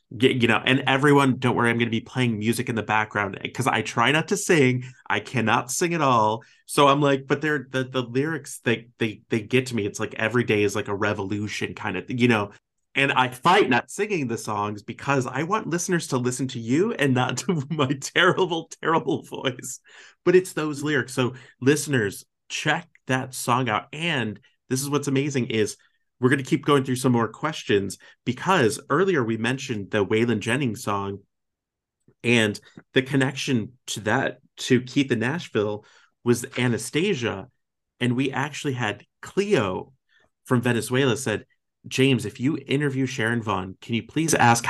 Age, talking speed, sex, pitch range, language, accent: 30-49, 185 wpm, male, 110-140 Hz, English, American